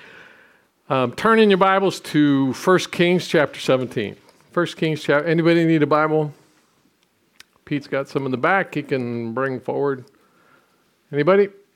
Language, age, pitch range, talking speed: English, 50-69, 135-180 Hz, 145 wpm